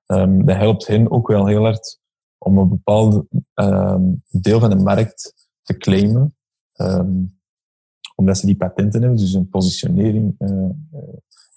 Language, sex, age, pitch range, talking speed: Dutch, male, 20-39, 95-115 Hz, 145 wpm